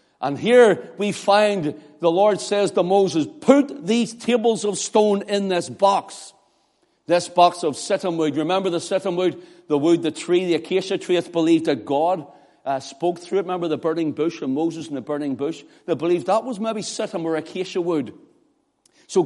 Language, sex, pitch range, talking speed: English, male, 165-205 Hz, 190 wpm